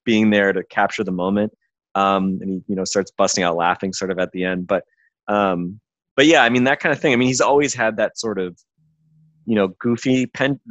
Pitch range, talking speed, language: 100-120 Hz, 235 wpm, English